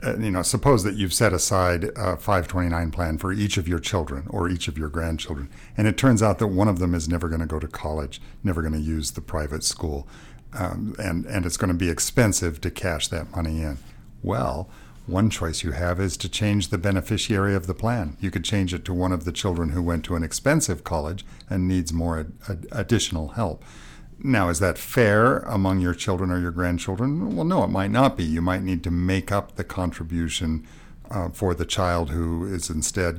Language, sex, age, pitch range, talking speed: English, male, 60-79, 80-100 Hz, 215 wpm